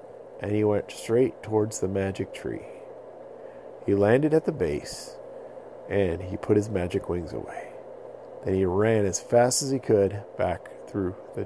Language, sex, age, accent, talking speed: English, male, 40-59, American, 160 wpm